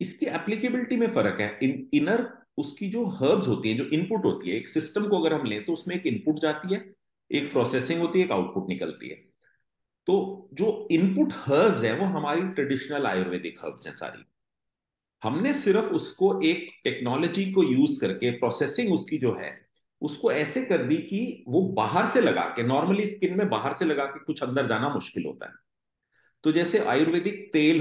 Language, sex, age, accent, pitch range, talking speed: Hindi, male, 40-59, native, 135-205 Hz, 190 wpm